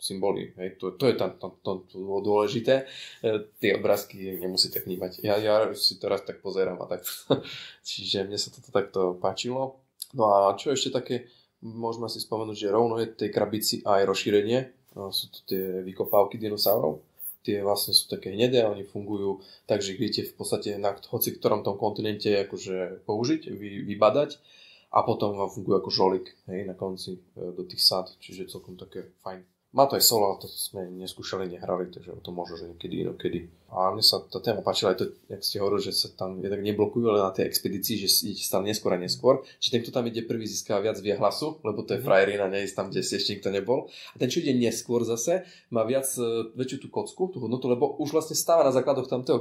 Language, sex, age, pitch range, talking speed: Slovak, male, 20-39, 95-115 Hz, 210 wpm